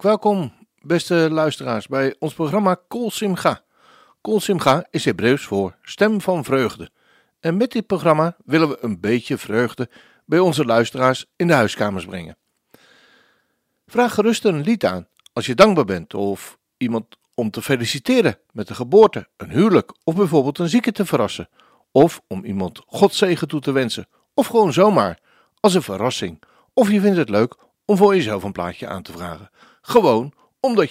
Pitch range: 115-195 Hz